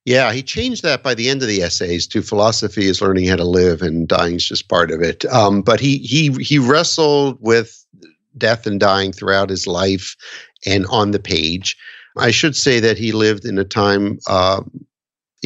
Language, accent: English, American